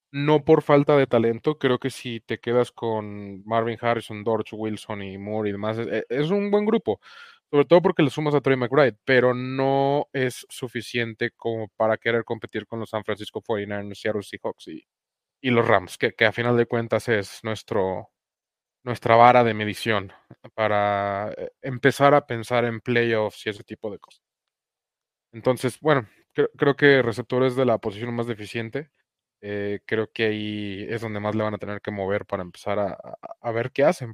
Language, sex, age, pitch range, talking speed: English, male, 20-39, 110-135 Hz, 190 wpm